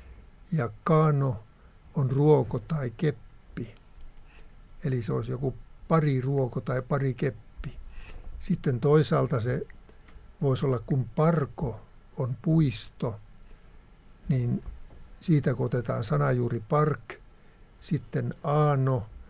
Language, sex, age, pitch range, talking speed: Finnish, male, 60-79, 110-145 Hz, 95 wpm